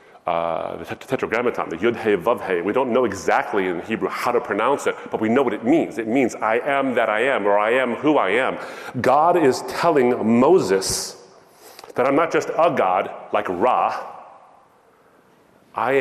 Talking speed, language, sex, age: 185 wpm, English, male, 30-49